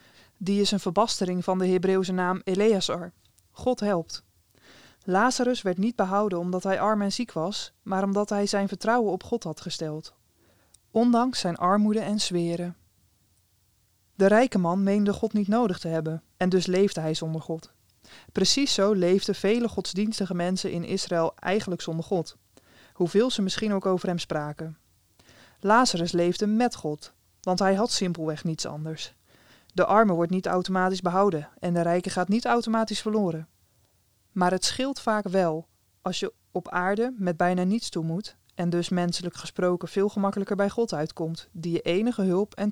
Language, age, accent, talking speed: Dutch, 20-39, Dutch, 165 wpm